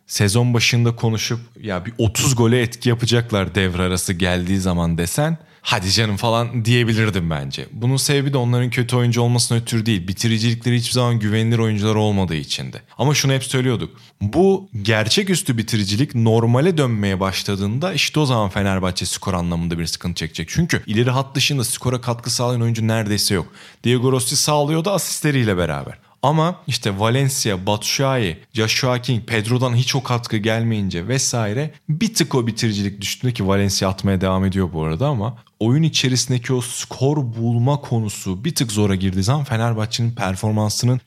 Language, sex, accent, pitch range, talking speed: Turkish, male, native, 110-135 Hz, 160 wpm